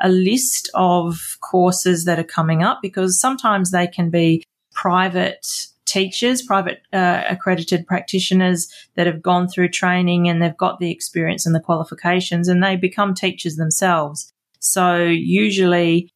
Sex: female